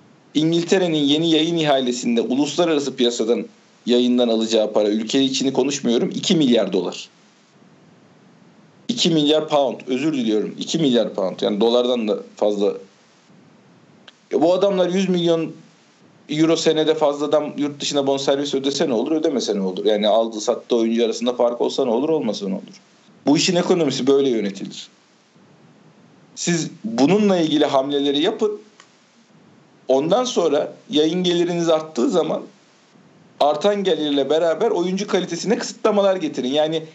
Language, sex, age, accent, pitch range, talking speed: Turkish, male, 50-69, native, 140-175 Hz, 130 wpm